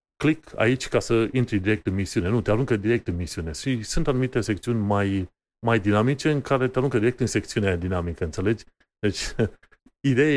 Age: 30-49